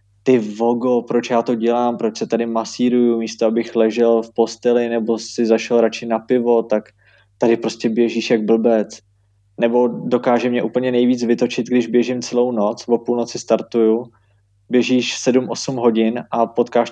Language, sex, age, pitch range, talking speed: Slovak, male, 20-39, 115-140 Hz, 160 wpm